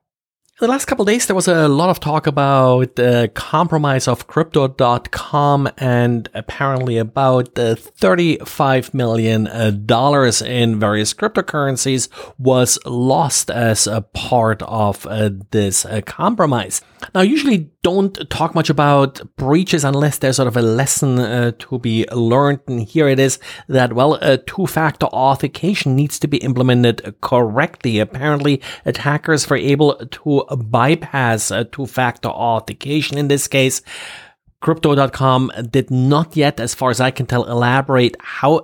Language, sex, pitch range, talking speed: English, male, 120-145 Hz, 135 wpm